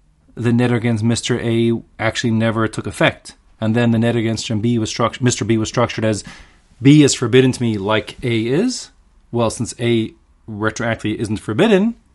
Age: 30-49